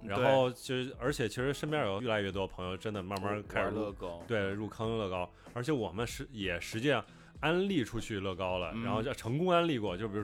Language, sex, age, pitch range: Chinese, male, 20-39, 100-140 Hz